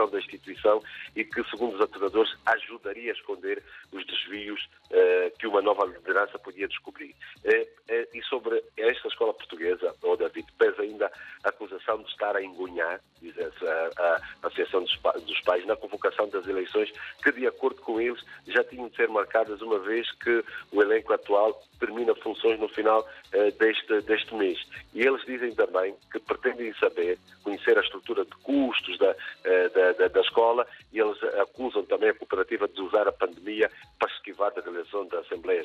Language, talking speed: Portuguese, 175 wpm